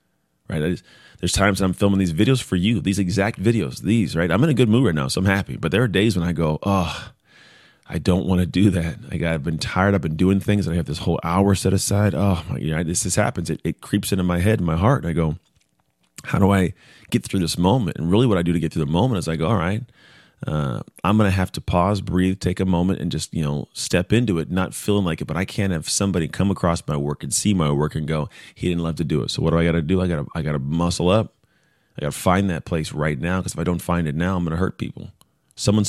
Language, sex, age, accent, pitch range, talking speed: English, male, 30-49, American, 80-100 Hz, 290 wpm